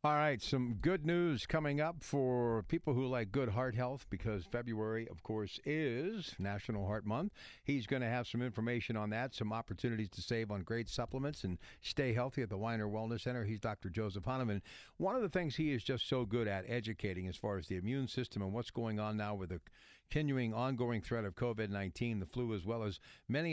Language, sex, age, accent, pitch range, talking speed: English, male, 60-79, American, 105-125 Hz, 215 wpm